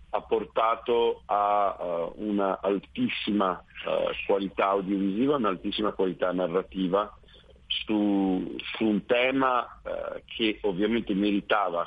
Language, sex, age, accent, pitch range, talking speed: Italian, male, 50-69, native, 95-115 Hz, 100 wpm